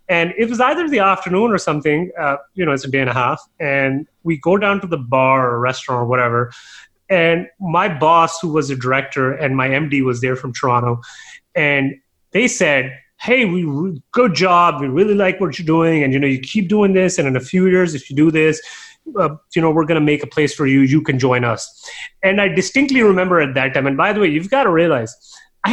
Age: 30-49